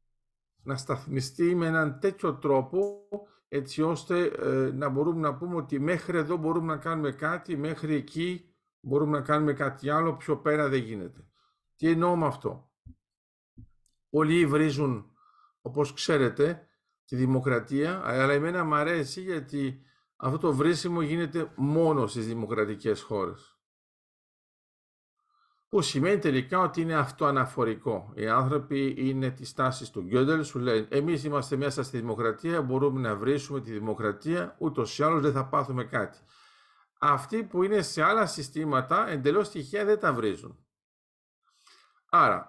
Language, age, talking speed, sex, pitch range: Greek, 50-69, 140 wpm, male, 135-175 Hz